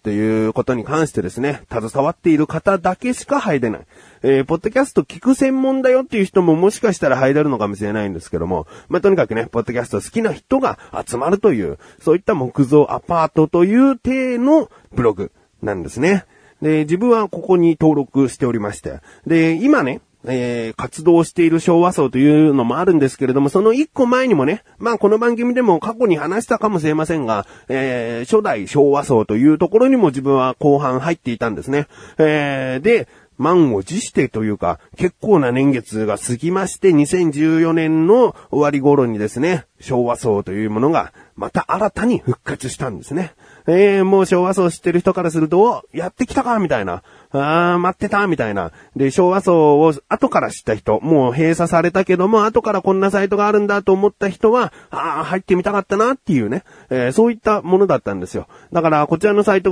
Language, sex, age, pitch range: Japanese, male, 30-49, 130-200 Hz